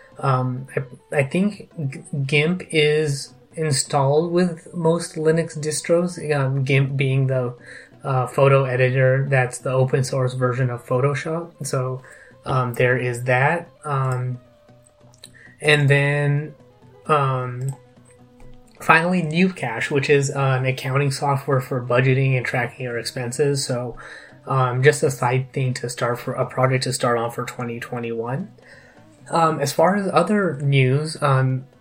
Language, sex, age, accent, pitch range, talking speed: English, male, 20-39, American, 125-150 Hz, 130 wpm